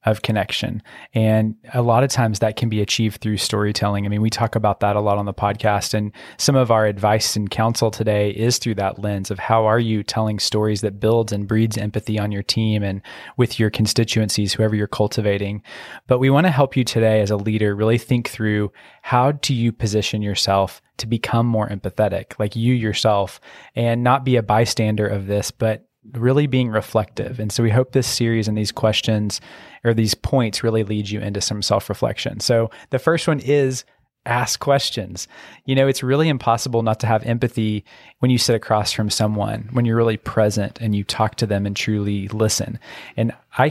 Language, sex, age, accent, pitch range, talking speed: English, male, 20-39, American, 105-120 Hz, 205 wpm